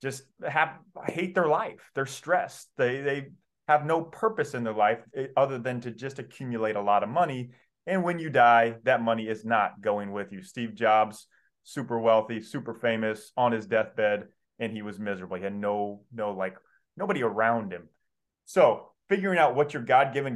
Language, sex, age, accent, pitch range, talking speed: English, male, 30-49, American, 115-175 Hz, 185 wpm